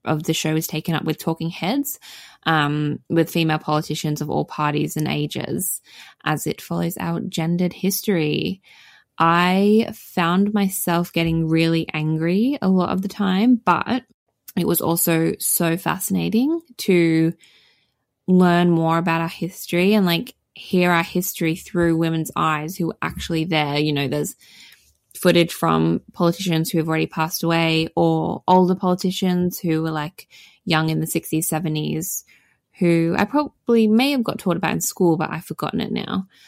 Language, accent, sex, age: English, Australian, female, 20-39